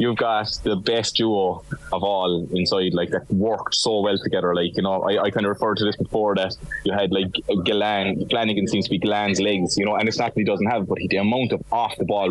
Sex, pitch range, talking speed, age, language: male, 95-115 Hz, 265 wpm, 20-39, English